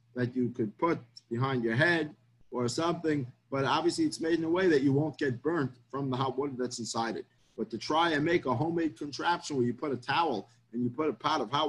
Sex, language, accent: male, English, American